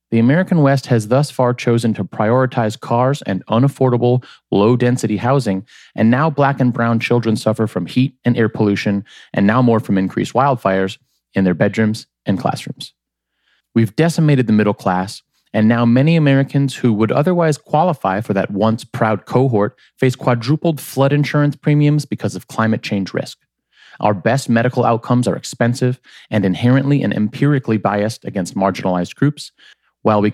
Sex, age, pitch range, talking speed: male, 30-49, 105-135 Hz, 160 wpm